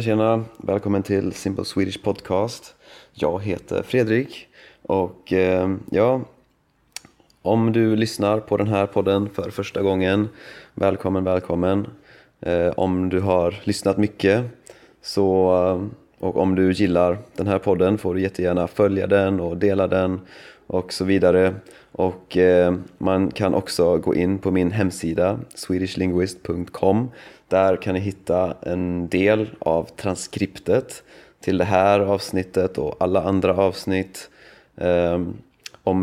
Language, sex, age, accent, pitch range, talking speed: Swedish, male, 30-49, native, 90-100 Hz, 130 wpm